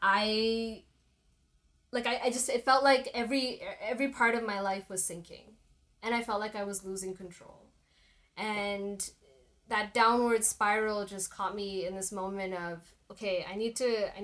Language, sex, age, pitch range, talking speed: English, female, 10-29, 190-235 Hz, 170 wpm